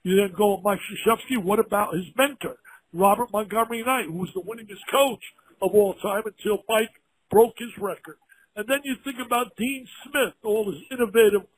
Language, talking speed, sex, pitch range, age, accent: English, 185 wpm, male, 200-245 Hz, 60-79, American